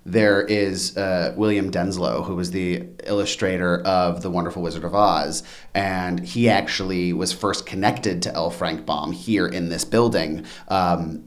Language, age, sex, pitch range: English, 30-49, male, 90-105 Hz